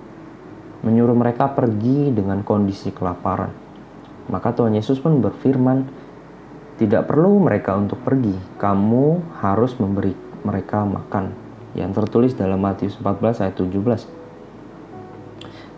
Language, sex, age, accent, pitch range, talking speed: Indonesian, male, 20-39, native, 100-125 Hz, 105 wpm